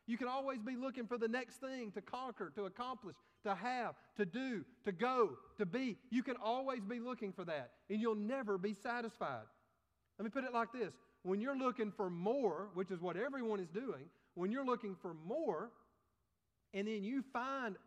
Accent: American